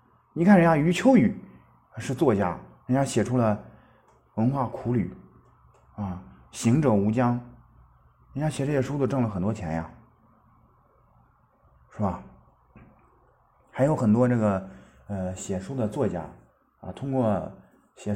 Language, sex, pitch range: Chinese, male, 90-125 Hz